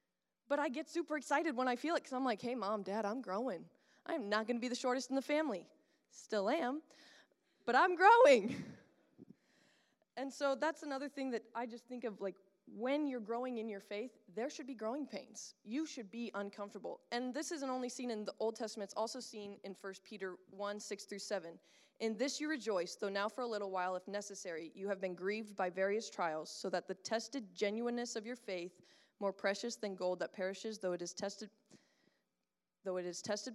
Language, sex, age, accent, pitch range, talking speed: English, female, 20-39, American, 200-255 Hz, 210 wpm